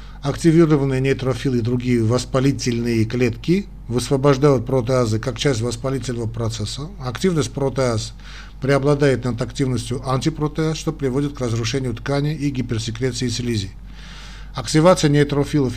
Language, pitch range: Russian, 120-145 Hz